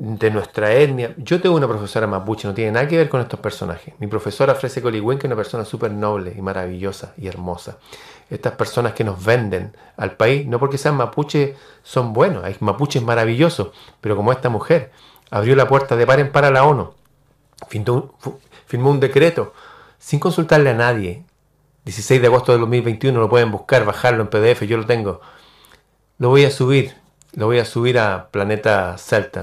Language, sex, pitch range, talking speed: Spanish, male, 115-150 Hz, 185 wpm